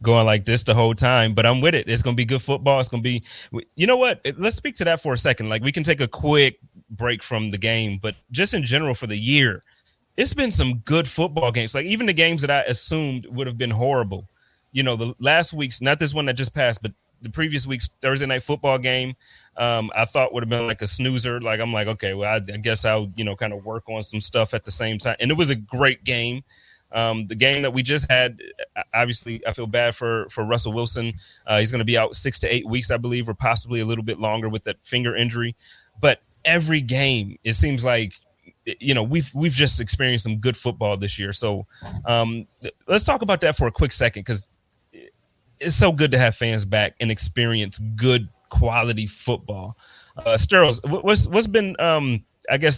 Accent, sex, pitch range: American, male, 110-135 Hz